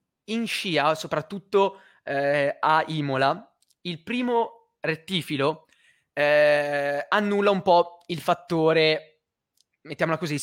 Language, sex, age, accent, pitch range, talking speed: Italian, male, 20-39, native, 145-195 Hz, 100 wpm